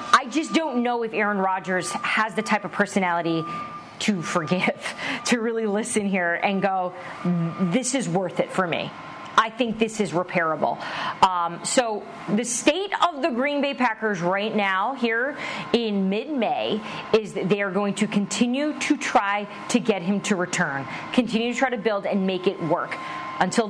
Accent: American